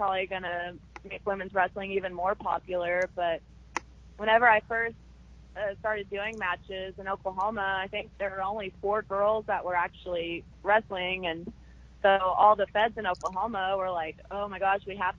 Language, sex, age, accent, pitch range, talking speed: English, female, 20-39, American, 175-200 Hz, 170 wpm